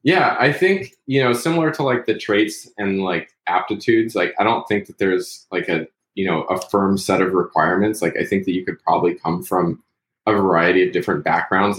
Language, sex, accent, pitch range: English, male, American, 90-110 Hz